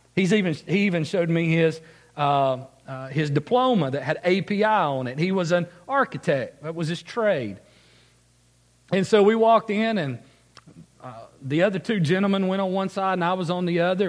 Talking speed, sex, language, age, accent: 190 wpm, male, English, 40-59, American